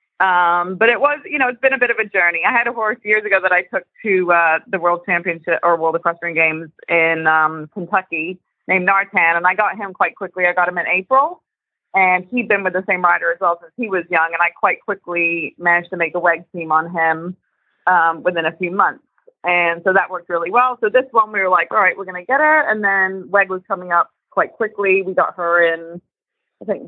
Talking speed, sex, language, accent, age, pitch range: 245 wpm, female, English, American, 30-49, 170-210 Hz